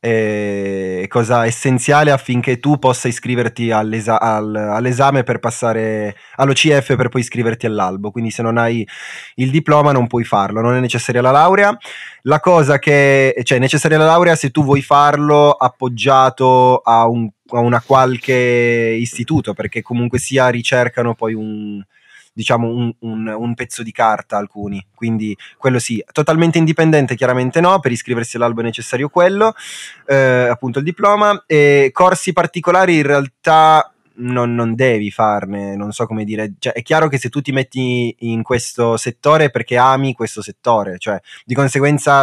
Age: 20-39